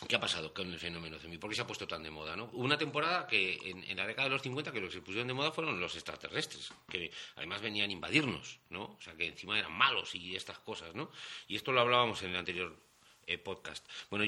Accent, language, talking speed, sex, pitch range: Spanish, Spanish, 265 wpm, male, 90-125 Hz